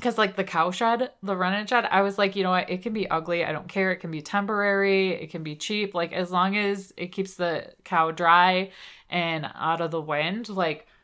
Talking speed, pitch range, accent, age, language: 240 wpm, 170-200 Hz, American, 20-39, English